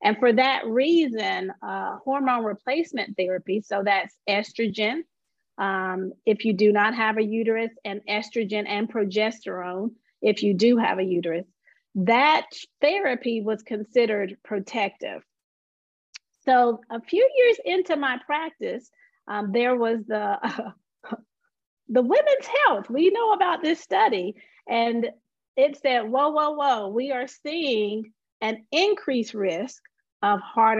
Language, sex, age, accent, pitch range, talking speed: English, female, 40-59, American, 210-280 Hz, 135 wpm